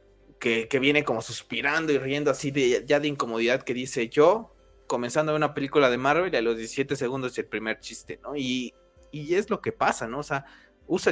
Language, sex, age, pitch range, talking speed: Spanish, male, 20-39, 120-155 Hz, 210 wpm